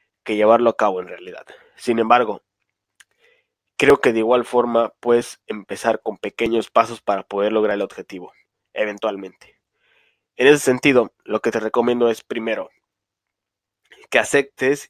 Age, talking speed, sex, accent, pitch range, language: 20-39, 140 wpm, male, Mexican, 100-130 Hz, Spanish